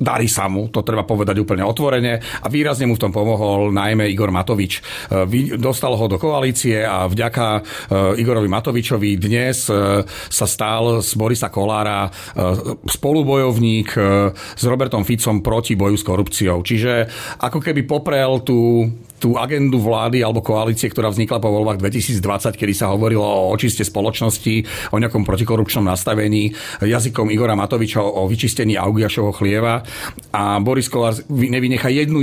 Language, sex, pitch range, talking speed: Slovak, male, 100-115 Hz, 140 wpm